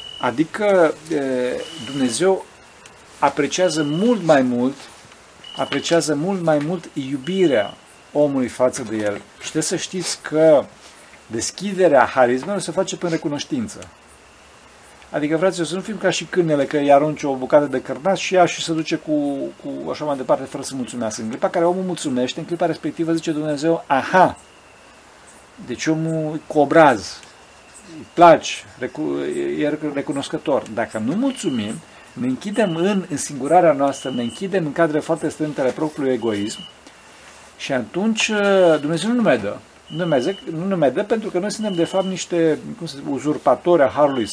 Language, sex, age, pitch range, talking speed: Romanian, male, 40-59, 145-185 Hz, 150 wpm